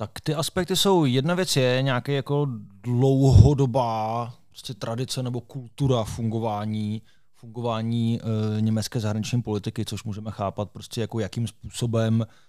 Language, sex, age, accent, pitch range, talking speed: Czech, male, 20-39, native, 105-125 Hz, 130 wpm